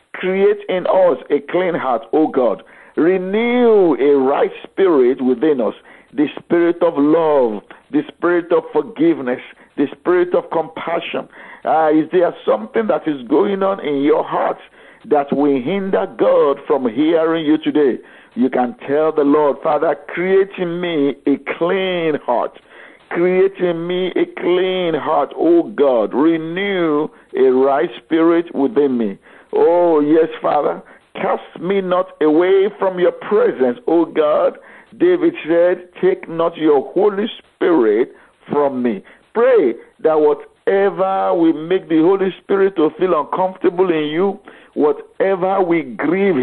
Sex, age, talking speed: male, 50-69, 140 wpm